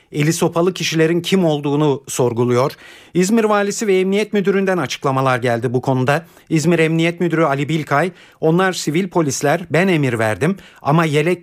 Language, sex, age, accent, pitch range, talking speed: Turkish, male, 50-69, native, 135-175 Hz, 145 wpm